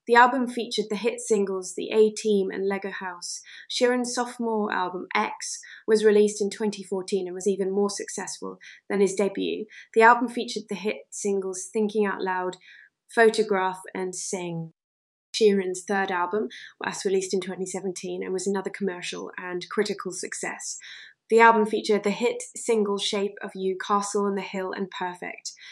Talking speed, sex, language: 160 wpm, female, English